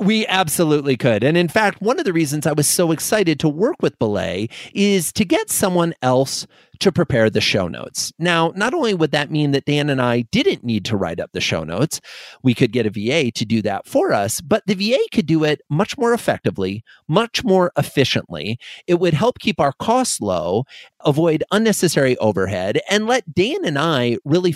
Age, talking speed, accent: 30-49, 205 wpm, American